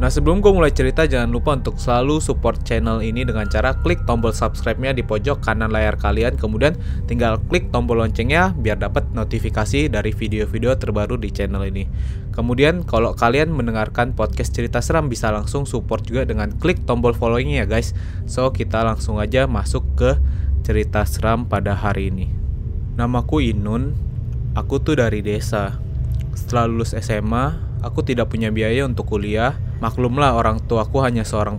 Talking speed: 160 wpm